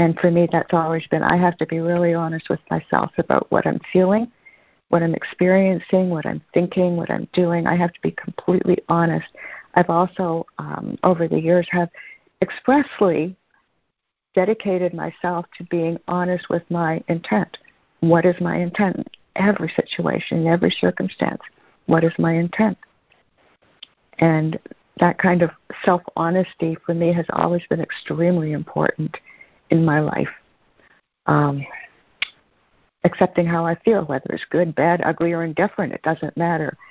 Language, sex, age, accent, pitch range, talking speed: English, female, 50-69, American, 165-180 Hz, 150 wpm